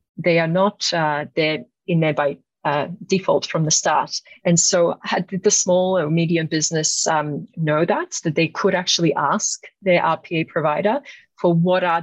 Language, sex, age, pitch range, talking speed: English, female, 40-59, 150-185 Hz, 170 wpm